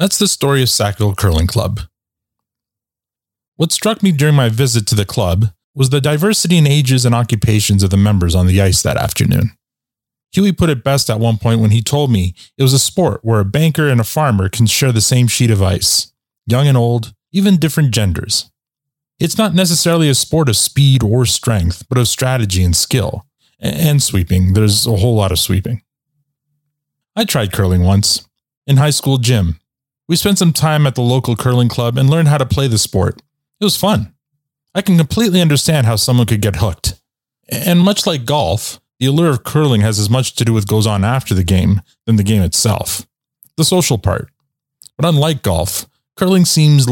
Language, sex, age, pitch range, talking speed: English, male, 30-49, 105-145 Hz, 195 wpm